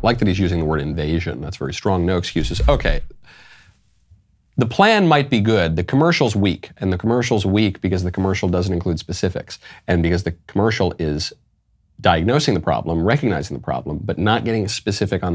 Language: English